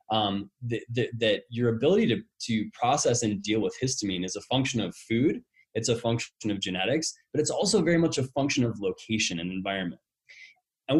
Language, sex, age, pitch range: English, male, 20-39, 115-160 Hz